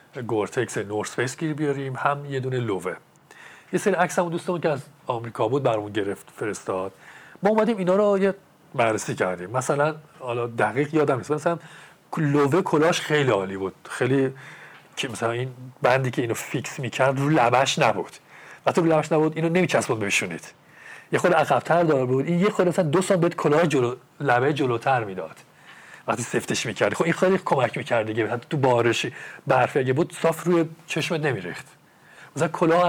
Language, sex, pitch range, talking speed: Persian, male, 125-170 Hz, 170 wpm